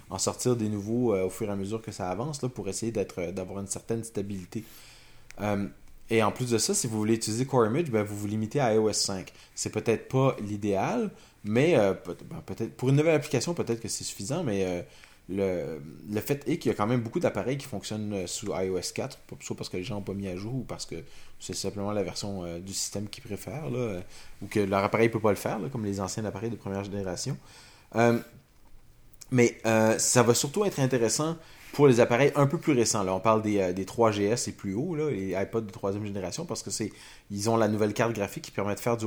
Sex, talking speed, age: male, 235 wpm, 20-39